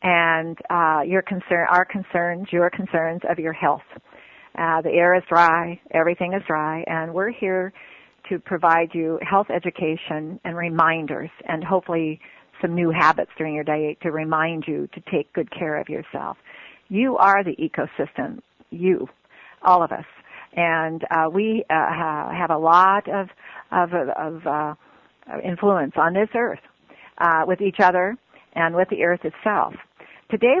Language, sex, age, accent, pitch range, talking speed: English, female, 50-69, American, 160-185 Hz, 155 wpm